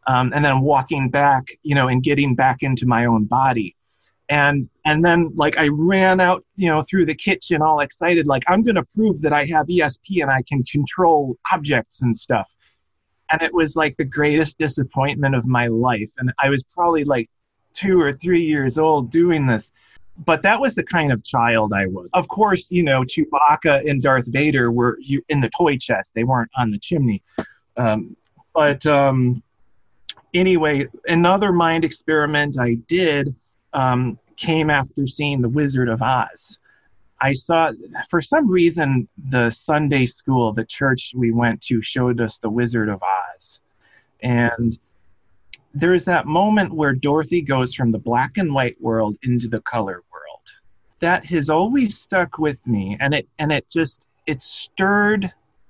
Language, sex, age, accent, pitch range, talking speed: English, male, 30-49, American, 120-165 Hz, 170 wpm